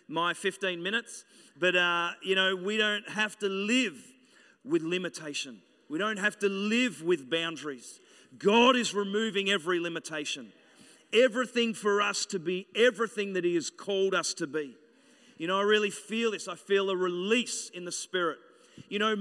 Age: 40-59